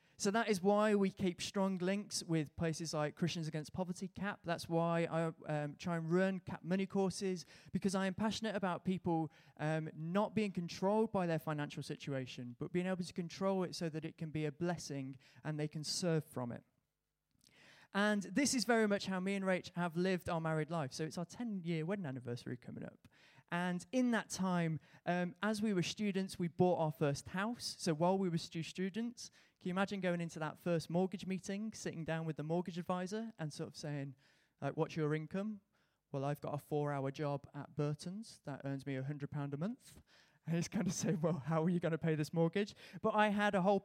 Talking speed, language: 215 wpm, English